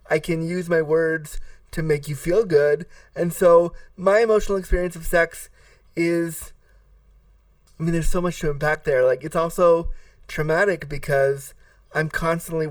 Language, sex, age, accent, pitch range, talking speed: English, male, 30-49, American, 130-165 Hz, 155 wpm